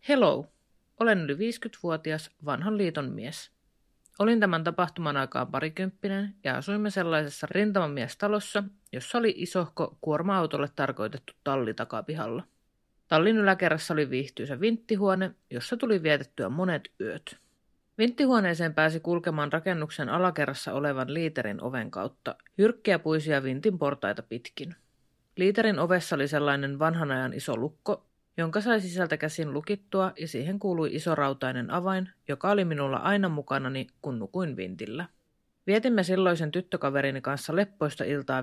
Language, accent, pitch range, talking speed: Finnish, native, 140-195 Hz, 125 wpm